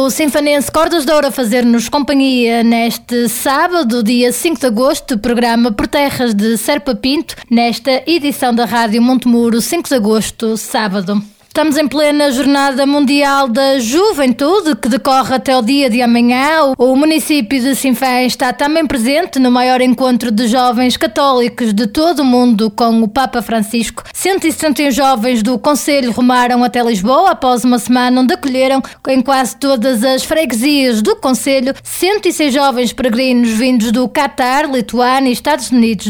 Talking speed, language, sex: 150 wpm, Portuguese, female